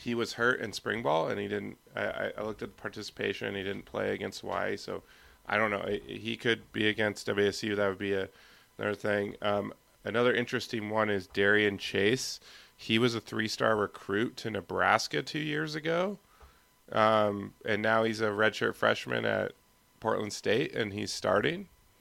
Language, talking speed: English, 180 wpm